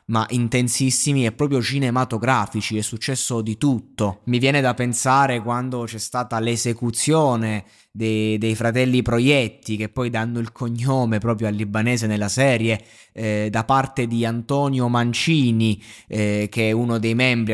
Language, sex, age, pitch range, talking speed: Italian, male, 20-39, 115-140 Hz, 145 wpm